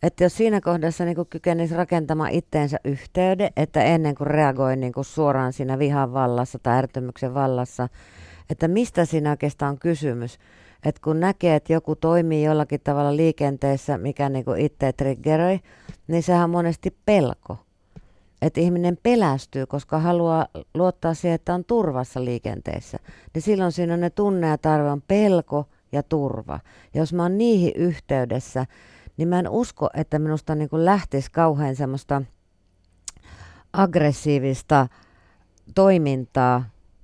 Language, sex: Finnish, female